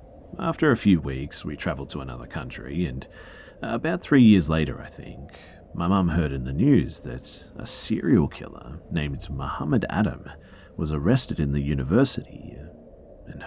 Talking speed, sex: 155 wpm, male